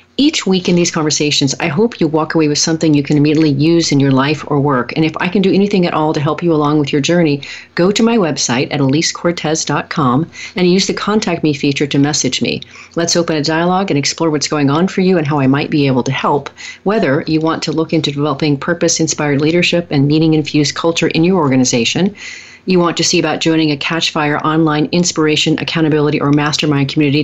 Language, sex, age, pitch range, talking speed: English, female, 40-59, 150-175 Hz, 225 wpm